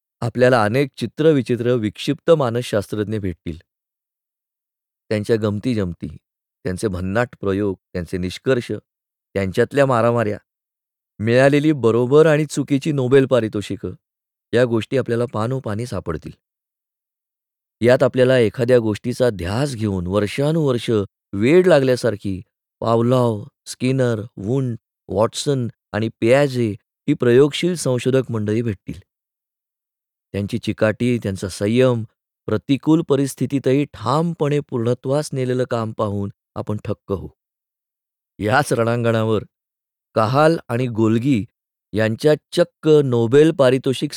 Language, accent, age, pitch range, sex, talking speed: Marathi, native, 20-39, 105-135 Hz, male, 95 wpm